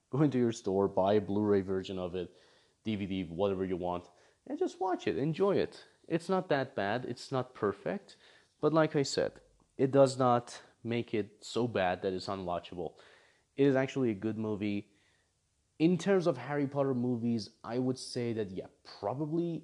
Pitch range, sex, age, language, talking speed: 95-130 Hz, male, 30-49, English, 180 wpm